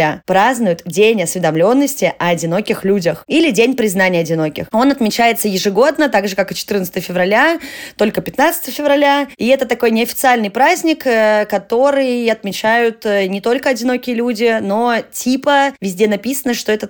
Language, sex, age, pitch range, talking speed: Russian, female, 20-39, 195-245 Hz, 140 wpm